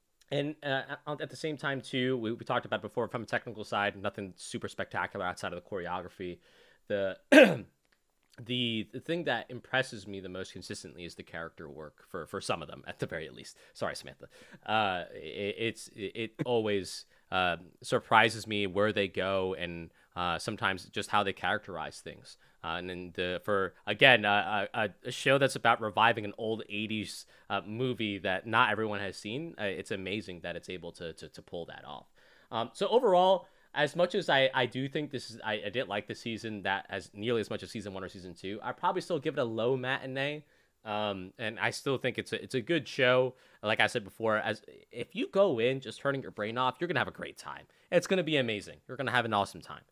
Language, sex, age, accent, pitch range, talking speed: English, male, 20-39, American, 100-130 Hz, 220 wpm